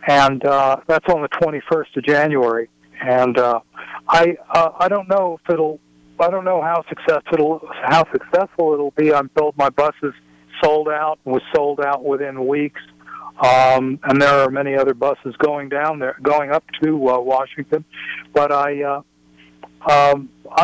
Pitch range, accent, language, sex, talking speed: 130-160 Hz, American, English, male, 165 wpm